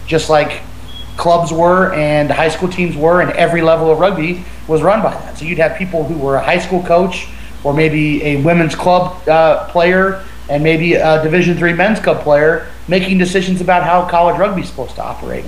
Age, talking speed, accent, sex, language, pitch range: 30-49, 200 wpm, American, male, English, 140-170 Hz